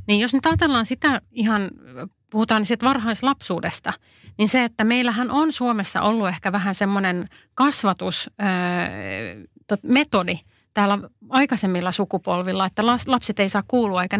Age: 30-49